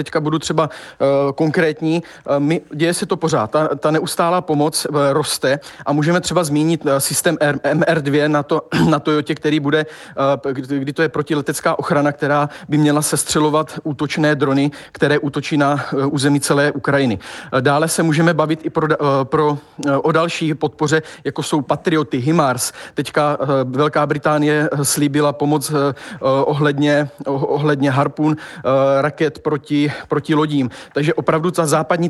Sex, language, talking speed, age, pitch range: male, Czech, 165 wpm, 40-59, 145-160 Hz